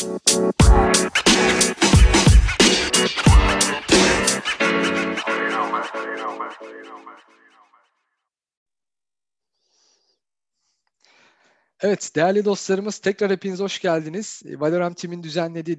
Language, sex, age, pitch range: Turkish, male, 50-69, 150-185 Hz